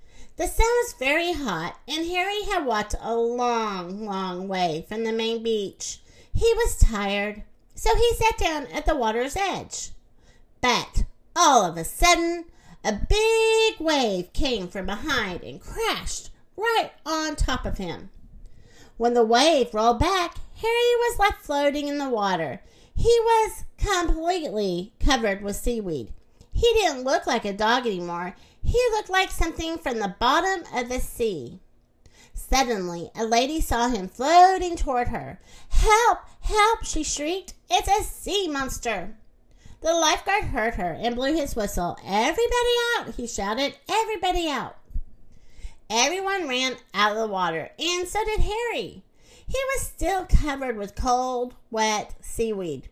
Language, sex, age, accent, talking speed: English, female, 50-69, American, 145 wpm